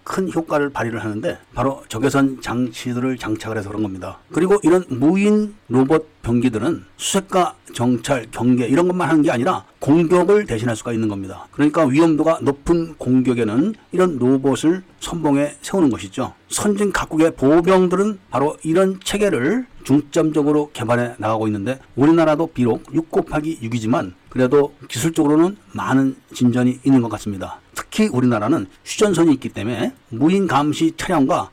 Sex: male